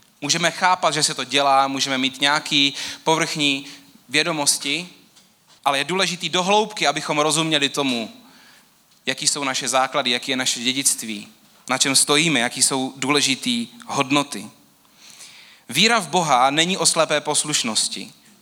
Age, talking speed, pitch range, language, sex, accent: 30-49, 135 wpm, 145-190 Hz, Czech, male, native